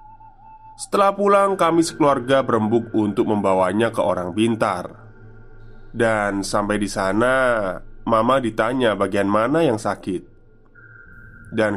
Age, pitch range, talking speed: 20-39, 110-135 Hz, 105 wpm